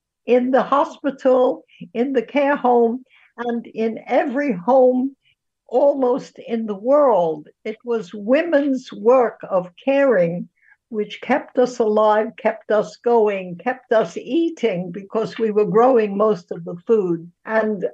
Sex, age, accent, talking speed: female, 60-79, American, 135 wpm